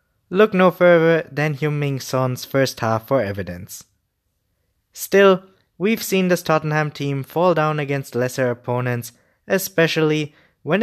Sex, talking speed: male, 135 wpm